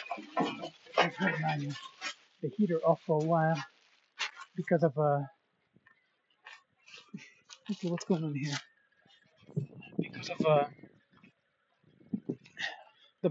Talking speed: 85 wpm